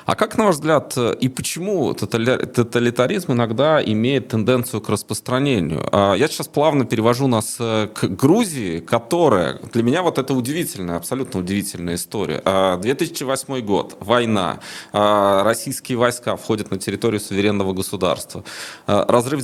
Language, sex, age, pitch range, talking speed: Russian, male, 20-39, 105-140 Hz, 125 wpm